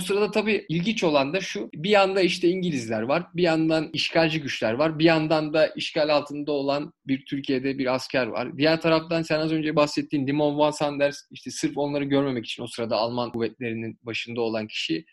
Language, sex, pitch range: Turkish, male, 125-165 Hz